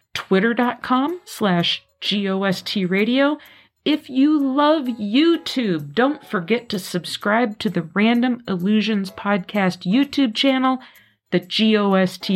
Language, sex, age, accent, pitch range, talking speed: English, female, 40-59, American, 200-265 Hz, 100 wpm